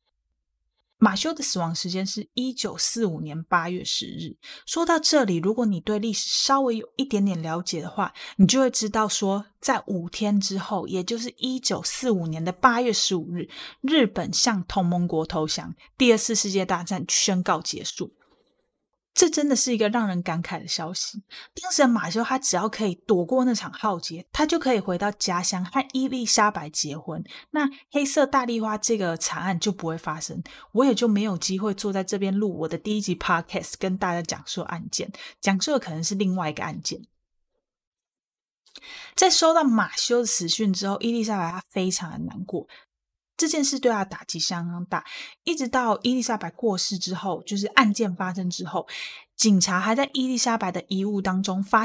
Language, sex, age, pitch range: Chinese, female, 20-39, 175-235 Hz